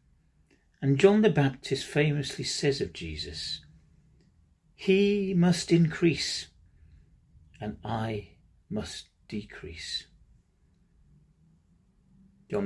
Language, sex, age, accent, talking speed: English, male, 40-59, British, 75 wpm